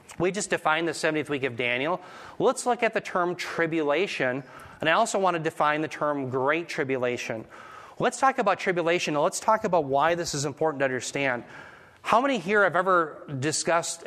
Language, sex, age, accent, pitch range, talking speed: English, male, 30-49, American, 150-185 Hz, 190 wpm